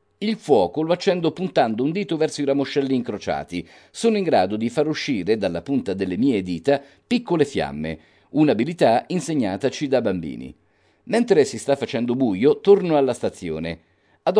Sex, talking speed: male, 155 wpm